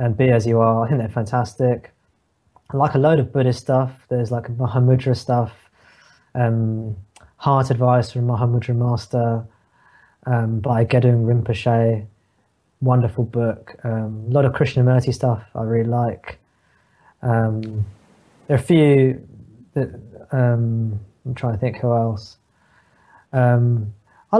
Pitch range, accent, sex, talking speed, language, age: 120-150 Hz, British, male, 140 wpm, English, 20-39